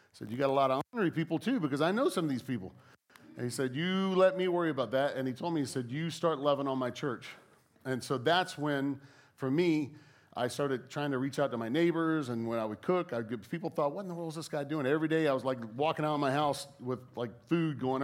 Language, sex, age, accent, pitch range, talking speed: English, male, 40-59, American, 125-155 Hz, 270 wpm